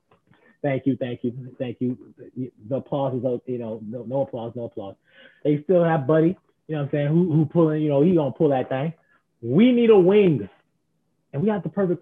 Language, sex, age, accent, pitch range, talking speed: English, male, 30-49, American, 130-165 Hz, 220 wpm